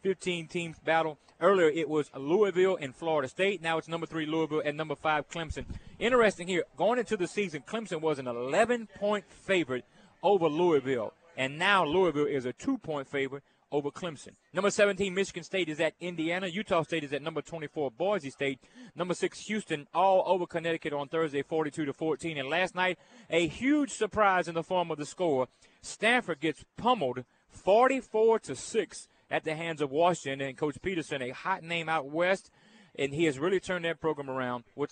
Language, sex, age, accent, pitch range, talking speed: English, male, 30-49, American, 135-180 Hz, 185 wpm